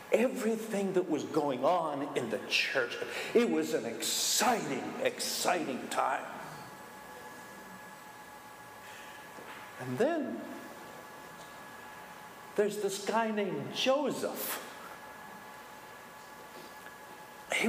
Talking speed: 75 wpm